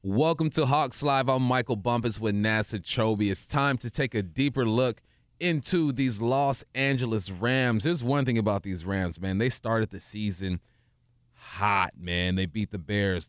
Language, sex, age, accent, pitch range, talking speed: English, male, 30-49, American, 105-130 Hz, 170 wpm